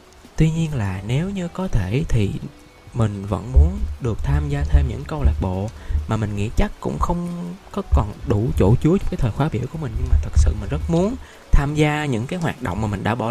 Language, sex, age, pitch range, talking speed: Vietnamese, male, 20-39, 105-155 Hz, 245 wpm